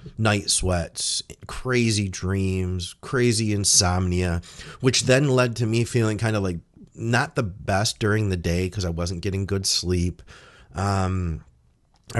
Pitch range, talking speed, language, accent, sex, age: 95-120 Hz, 145 wpm, English, American, male, 30-49